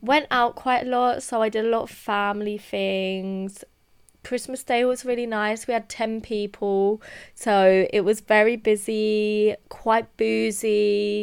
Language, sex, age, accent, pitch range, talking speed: English, female, 20-39, British, 185-220 Hz, 155 wpm